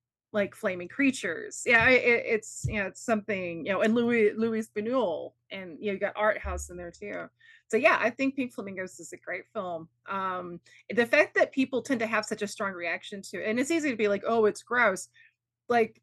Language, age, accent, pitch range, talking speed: English, 20-39, American, 185-235 Hz, 230 wpm